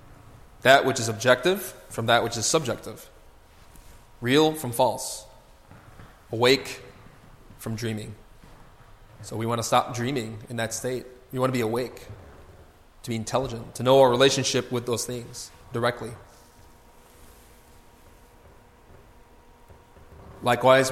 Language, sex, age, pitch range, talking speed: English, male, 20-39, 105-130 Hz, 120 wpm